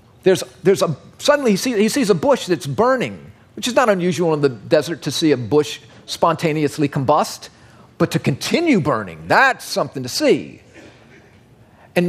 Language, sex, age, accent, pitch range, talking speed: English, male, 50-69, American, 130-210 Hz, 165 wpm